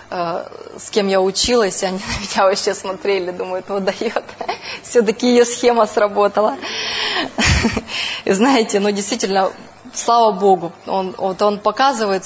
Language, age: Russian, 20-39